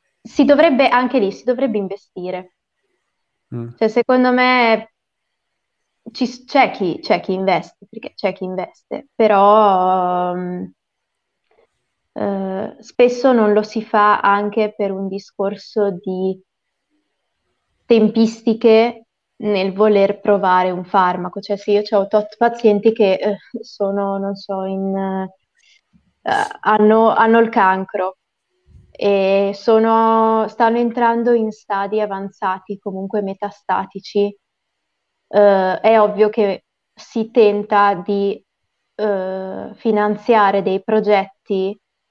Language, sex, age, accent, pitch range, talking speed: Italian, female, 20-39, native, 195-225 Hz, 95 wpm